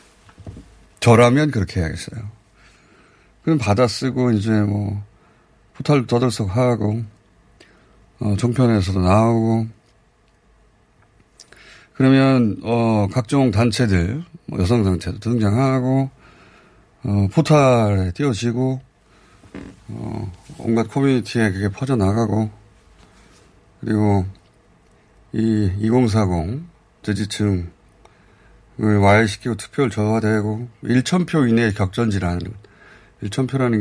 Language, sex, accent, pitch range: Korean, male, native, 100-120 Hz